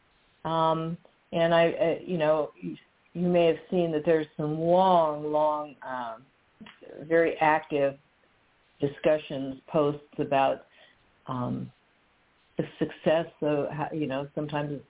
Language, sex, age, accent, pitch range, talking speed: English, female, 50-69, American, 150-180 Hz, 120 wpm